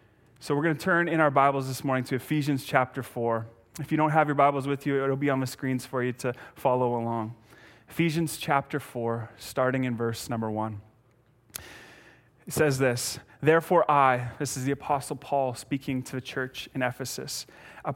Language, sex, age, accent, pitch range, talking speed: English, male, 30-49, American, 125-150 Hz, 190 wpm